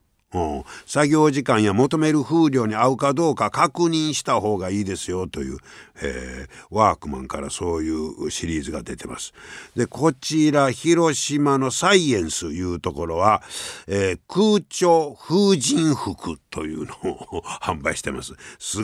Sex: male